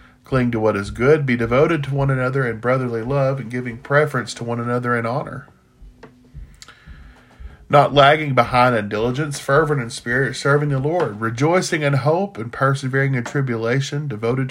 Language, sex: English, male